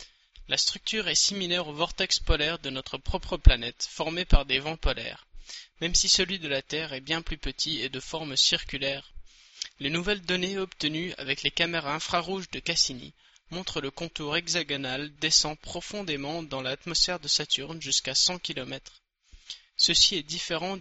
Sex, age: male, 20-39